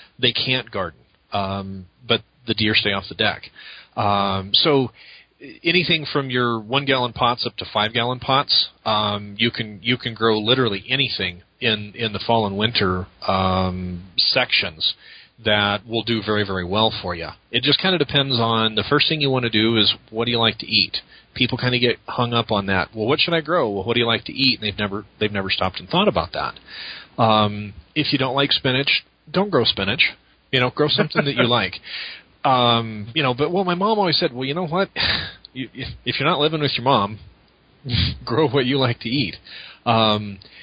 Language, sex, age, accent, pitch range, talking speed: English, male, 30-49, American, 105-135 Hz, 205 wpm